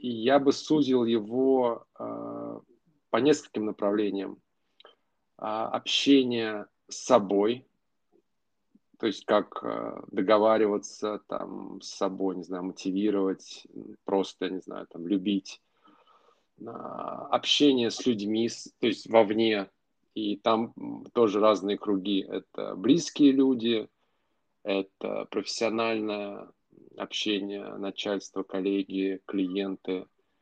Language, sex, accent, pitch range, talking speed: Russian, male, native, 95-120 Hz, 100 wpm